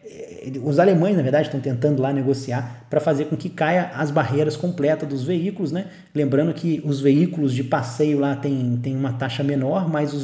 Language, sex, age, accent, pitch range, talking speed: English, male, 20-39, Brazilian, 135-180 Hz, 195 wpm